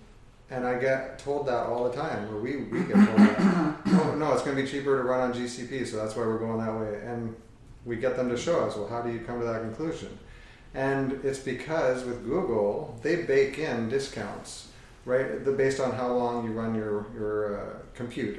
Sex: male